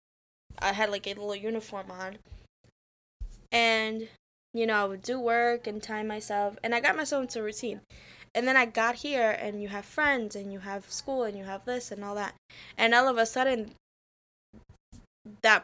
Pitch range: 195-225 Hz